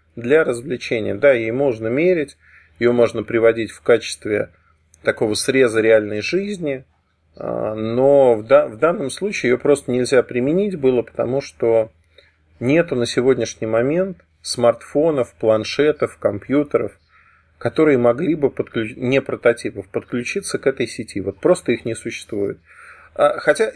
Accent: native